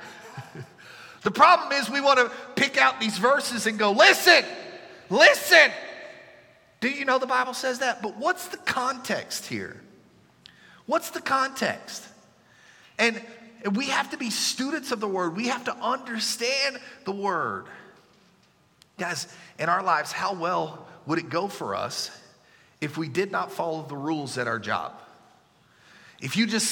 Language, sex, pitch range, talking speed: English, male, 205-275 Hz, 155 wpm